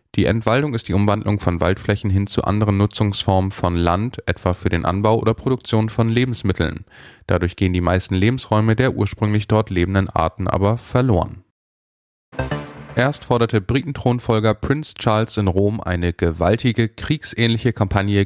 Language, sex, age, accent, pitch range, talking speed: German, male, 10-29, German, 100-120 Hz, 145 wpm